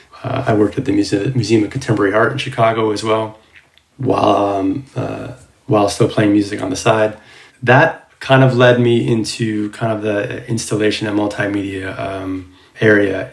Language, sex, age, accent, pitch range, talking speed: English, male, 20-39, American, 105-120 Hz, 170 wpm